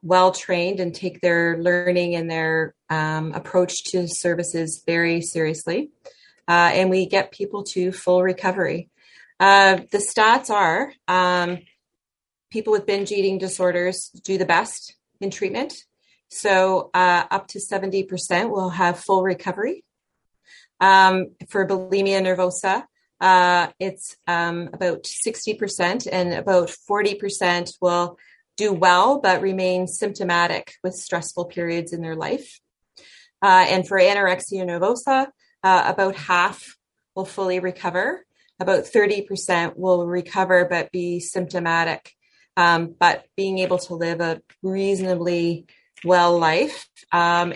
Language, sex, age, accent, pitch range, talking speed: English, female, 30-49, American, 175-195 Hz, 125 wpm